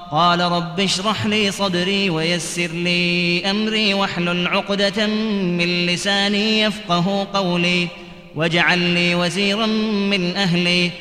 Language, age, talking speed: Arabic, 20-39, 105 wpm